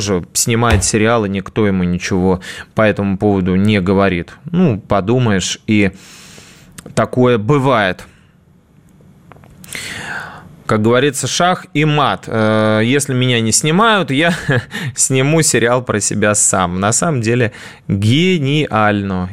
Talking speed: 105 wpm